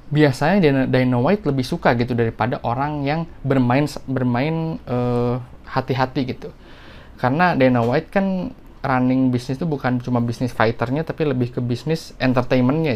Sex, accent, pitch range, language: male, native, 120-135 Hz, Indonesian